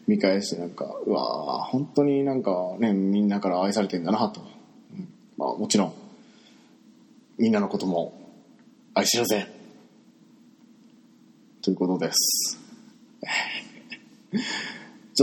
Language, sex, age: Japanese, male, 20-39